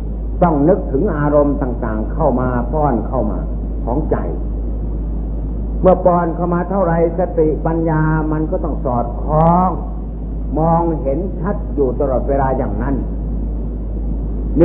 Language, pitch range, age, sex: Thai, 140-165 Hz, 60-79, male